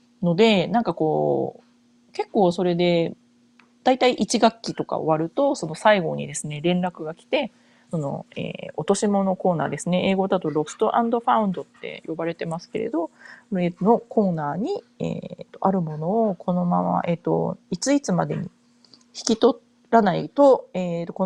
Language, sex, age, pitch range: Japanese, female, 30-49, 165-230 Hz